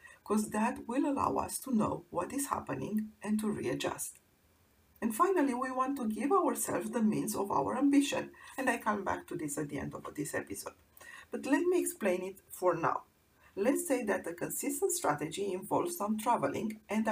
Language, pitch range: English, 195-275 Hz